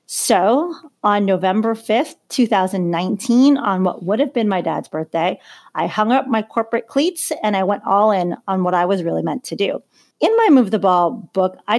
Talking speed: 200 wpm